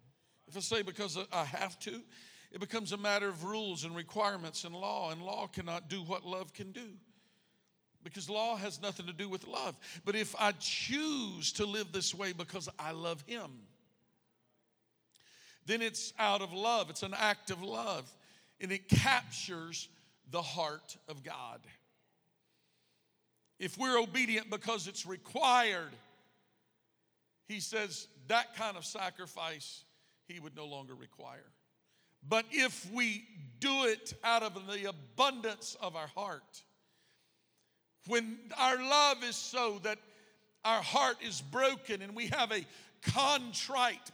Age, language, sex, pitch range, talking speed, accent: 50-69, English, male, 165-215 Hz, 145 wpm, American